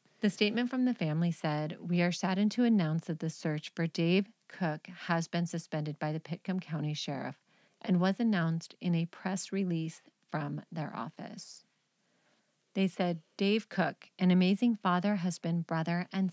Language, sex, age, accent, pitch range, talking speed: English, female, 40-59, American, 160-190 Hz, 165 wpm